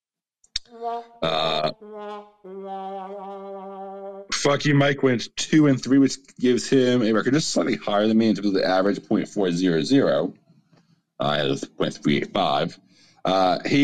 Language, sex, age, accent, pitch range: English, male, 40-59, American, 95-155 Hz